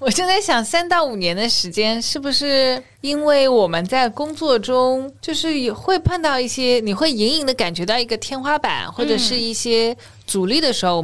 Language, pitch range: Chinese, 175-255 Hz